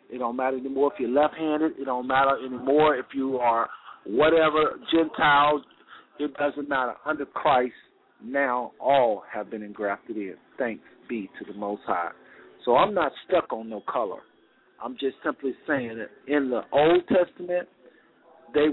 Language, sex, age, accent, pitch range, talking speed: English, male, 50-69, American, 135-185 Hz, 165 wpm